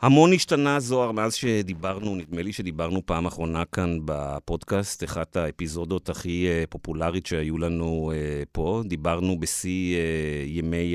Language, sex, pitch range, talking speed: Hebrew, male, 75-95 Hz, 120 wpm